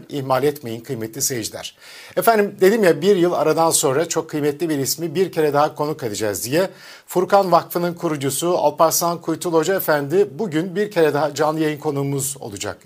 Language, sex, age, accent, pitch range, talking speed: Turkish, male, 50-69, native, 150-185 Hz, 170 wpm